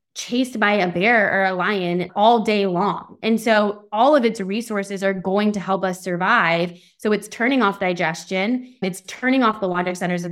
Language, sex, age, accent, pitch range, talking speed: English, female, 20-39, American, 180-240 Hz, 200 wpm